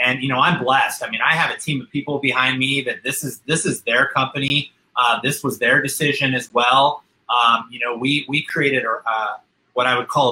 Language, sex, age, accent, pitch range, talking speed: English, male, 30-49, American, 120-150 Hz, 240 wpm